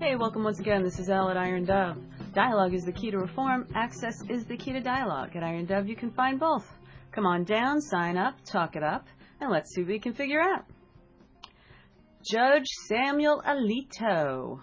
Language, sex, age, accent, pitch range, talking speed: English, female, 40-59, American, 190-260 Hz, 195 wpm